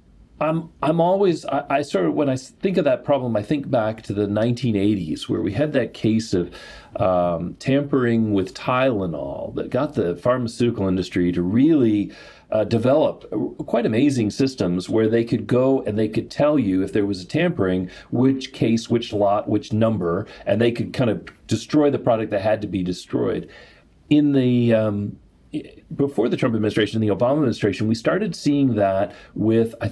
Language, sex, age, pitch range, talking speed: English, male, 40-59, 105-135 Hz, 185 wpm